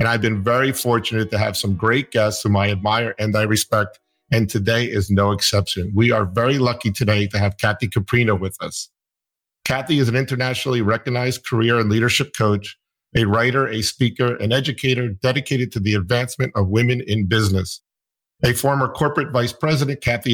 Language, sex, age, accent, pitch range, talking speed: English, male, 50-69, American, 105-125 Hz, 180 wpm